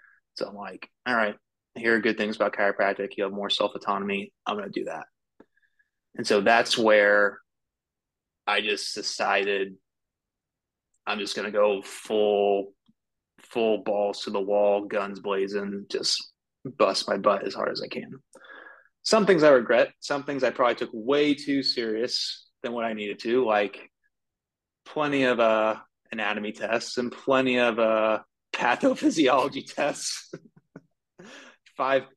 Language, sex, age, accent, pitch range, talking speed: English, male, 20-39, American, 105-125 Hz, 150 wpm